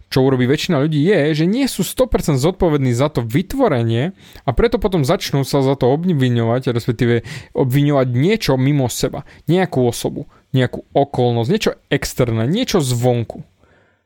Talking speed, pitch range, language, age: 145 wpm, 120-160 Hz, Slovak, 20-39